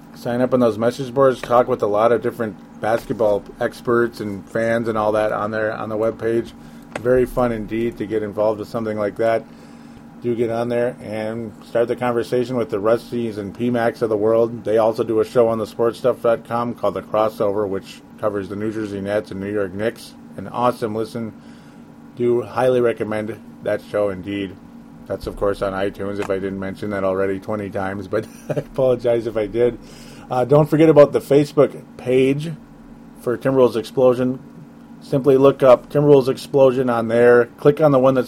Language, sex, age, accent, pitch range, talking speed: English, male, 30-49, American, 110-125 Hz, 190 wpm